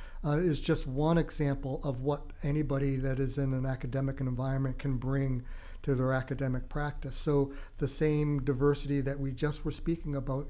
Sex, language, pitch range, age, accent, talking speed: male, English, 135-150 Hz, 50-69, American, 170 wpm